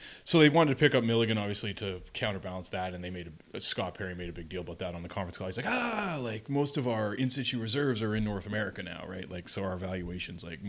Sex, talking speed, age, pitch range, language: male, 265 wpm, 20-39, 95-140 Hz, English